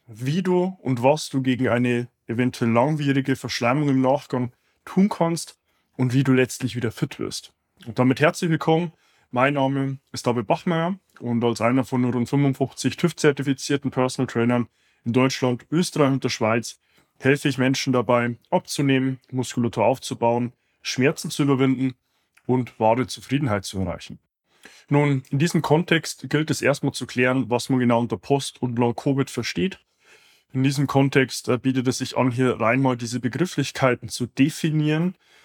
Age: 20-39